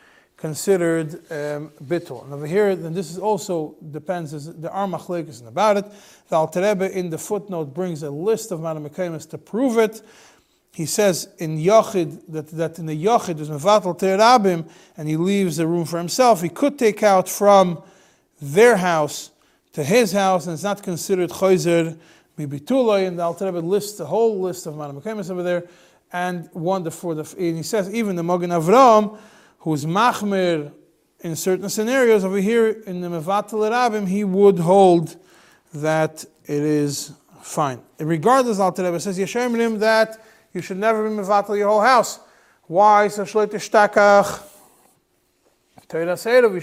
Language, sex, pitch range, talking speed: English, male, 170-215 Hz, 160 wpm